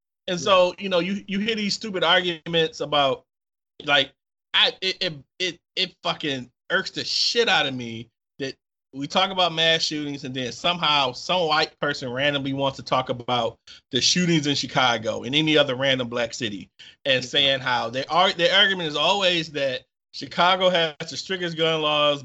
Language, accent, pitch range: English, American, 135-170 Hz